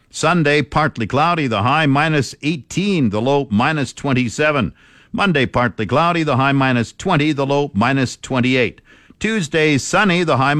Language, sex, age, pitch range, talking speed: English, male, 50-69, 120-155 Hz, 145 wpm